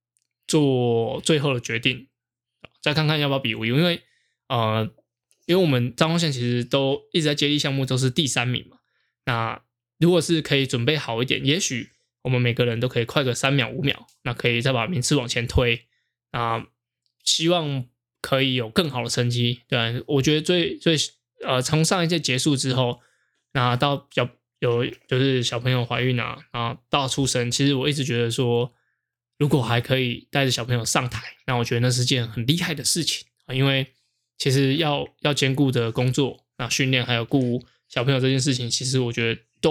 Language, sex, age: Chinese, male, 20-39